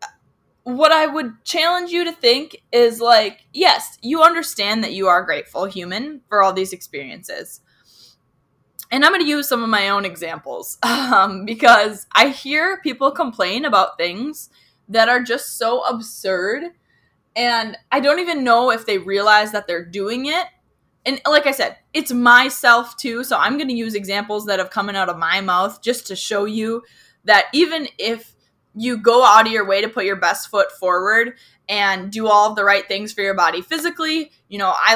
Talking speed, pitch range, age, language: 185 wpm, 195-265 Hz, 10-29, English